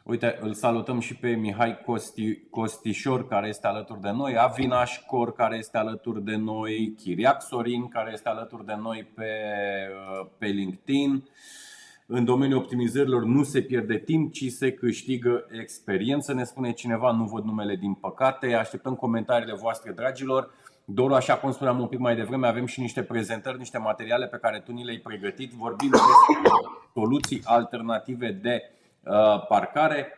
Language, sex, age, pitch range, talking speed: Romanian, male, 30-49, 110-125 Hz, 155 wpm